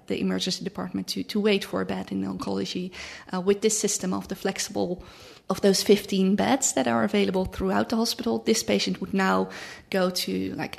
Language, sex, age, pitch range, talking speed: English, female, 20-39, 180-210 Hz, 200 wpm